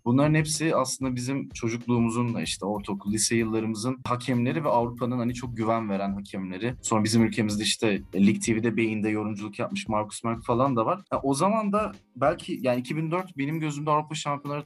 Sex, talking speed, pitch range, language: male, 170 wpm, 115-150 Hz, Turkish